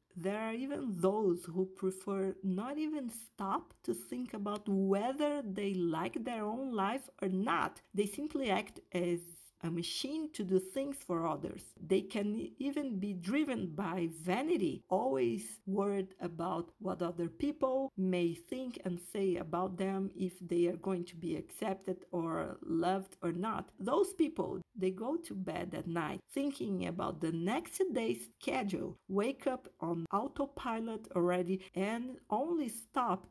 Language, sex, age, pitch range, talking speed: English, female, 50-69, 180-225 Hz, 150 wpm